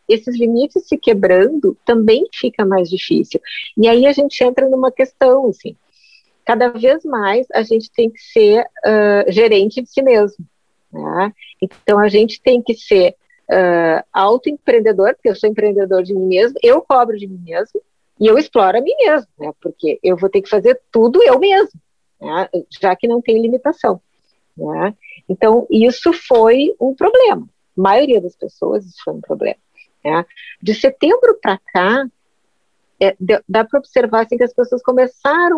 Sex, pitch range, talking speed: female, 195-255 Hz, 165 wpm